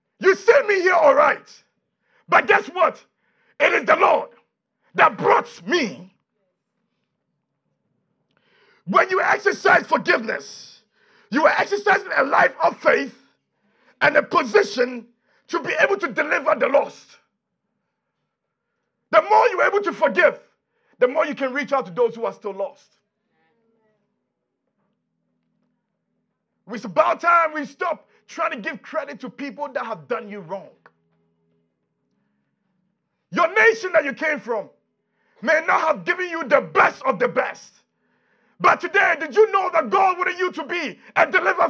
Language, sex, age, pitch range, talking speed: English, male, 50-69, 240-390 Hz, 145 wpm